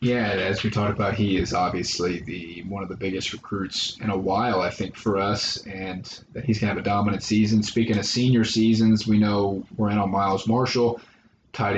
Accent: American